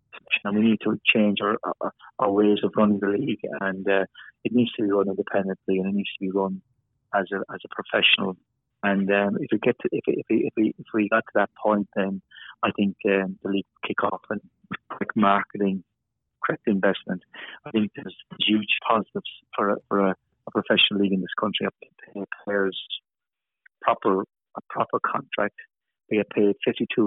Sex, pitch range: male, 100-110 Hz